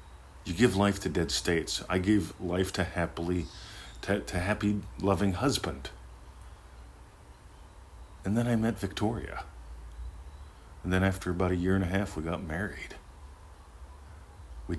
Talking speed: 140 wpm